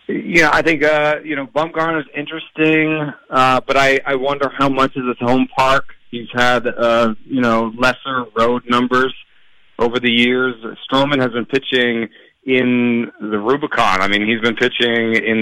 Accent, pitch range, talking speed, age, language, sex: American, 100-125 Hz, 170 wpm, 30-49, English, male